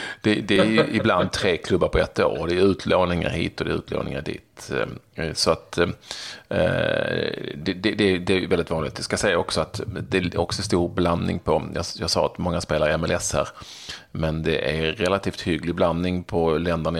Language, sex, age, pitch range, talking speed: Swedish, male, 30-49, 80-100 Hz, 185 wpm